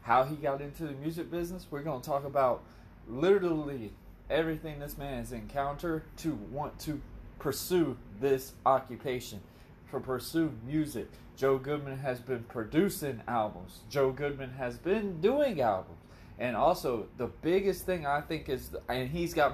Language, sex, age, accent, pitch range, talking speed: English, male, 20-39, American, 120-155 Hz, 150 wpm